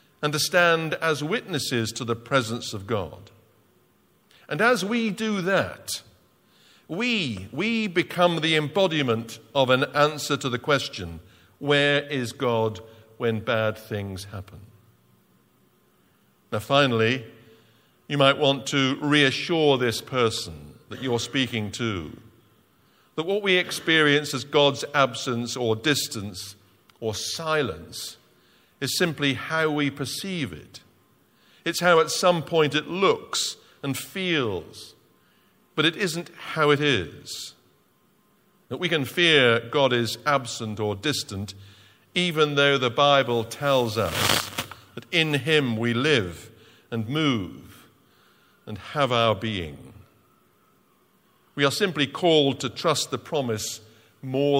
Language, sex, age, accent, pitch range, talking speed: English, male, 50-69, British, 115-155 Hz, 125 wpm